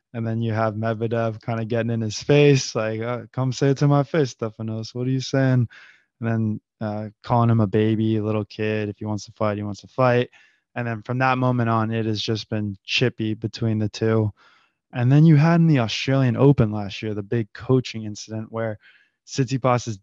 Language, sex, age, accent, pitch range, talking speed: English, male, 20-39, American, 110-125 Hz, 215 wpm